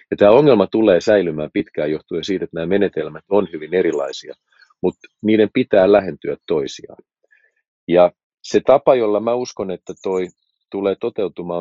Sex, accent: male, native